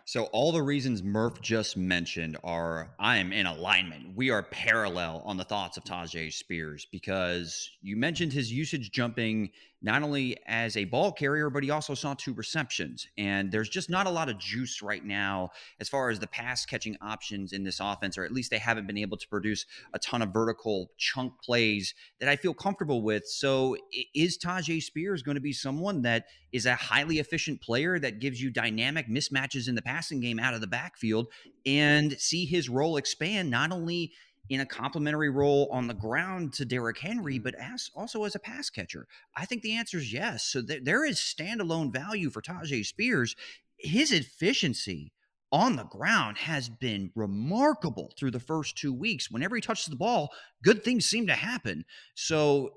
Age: 30-49